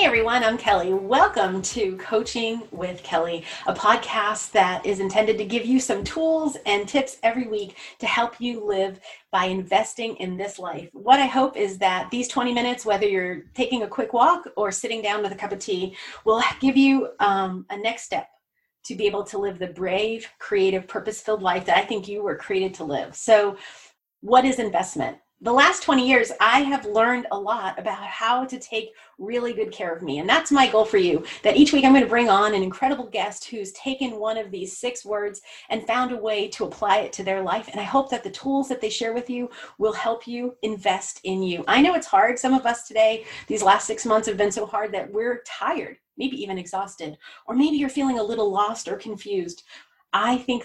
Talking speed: 215 wpm